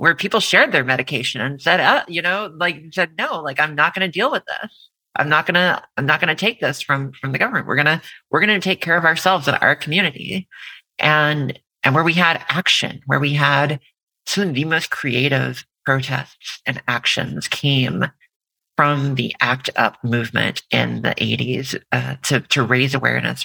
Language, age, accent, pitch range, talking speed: English, 40-59, American, 140-190 Hz, 205 wpm